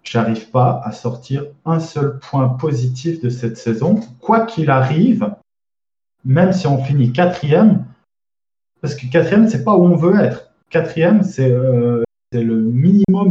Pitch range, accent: 130-175 Hz, French